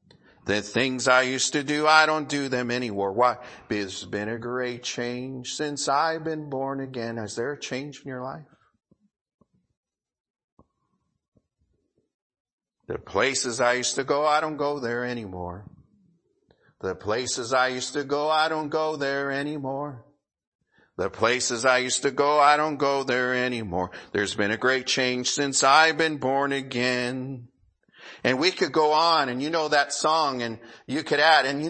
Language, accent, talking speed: English, American, 165 wpm